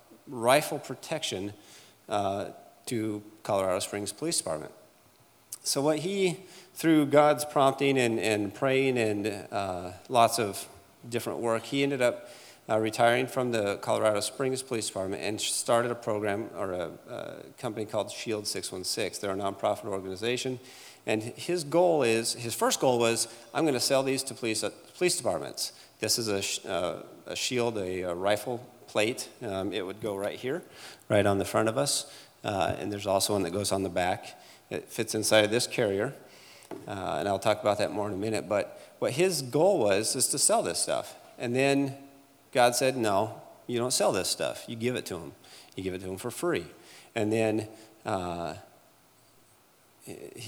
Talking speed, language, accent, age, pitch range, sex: 175 wpm, English, American, 40-59, 105-135 Hz, male